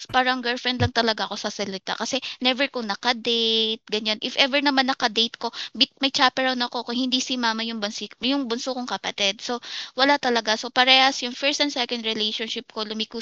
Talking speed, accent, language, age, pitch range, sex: 190 wpm, native, Filipino, 20-39, 210-265 Hz, female